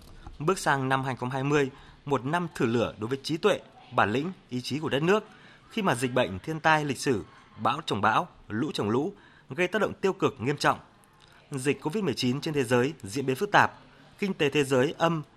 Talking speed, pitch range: 210 wpm, 130-160 Hz